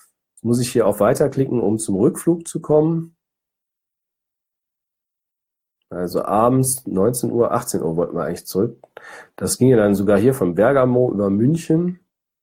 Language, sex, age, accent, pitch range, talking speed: German, male, 40-59, German, 105-140 Hz, 145 wpm